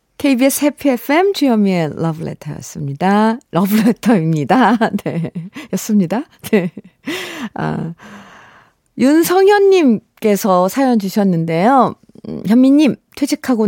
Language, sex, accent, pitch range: Korean, female, native, 205-275 Hz